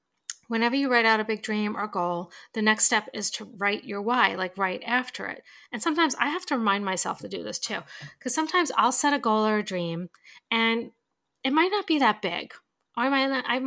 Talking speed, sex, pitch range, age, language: 220 wpm, female, 200-255 Hz, 40-59, English